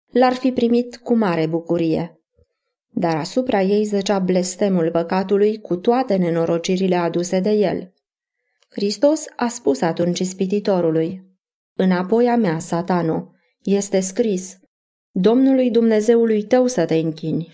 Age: 20-39